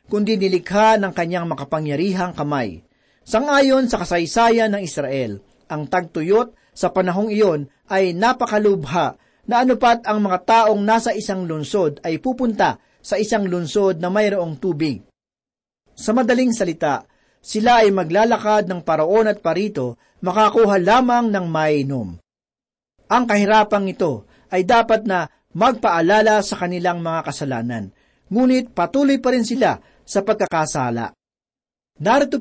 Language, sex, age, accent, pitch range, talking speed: Filipino, male, 40-59, native, 160-225 Hz, 125 wpm